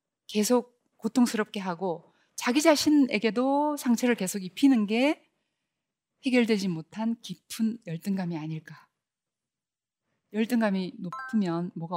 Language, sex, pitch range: Korean, female, 200-255 Hz